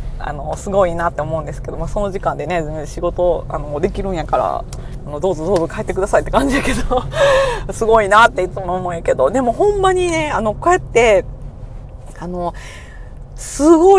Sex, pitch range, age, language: female, 175-285 Hz, 30-49, Japanese